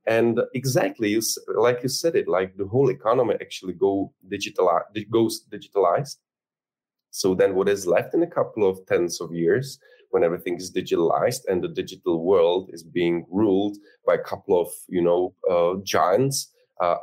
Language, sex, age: Czech, male, 30-49